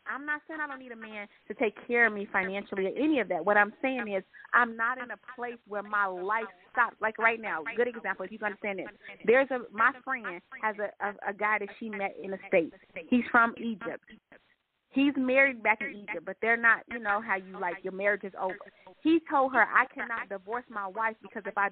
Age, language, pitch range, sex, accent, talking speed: 30-49, English, 200-250 Hz, female, American, 240 wpm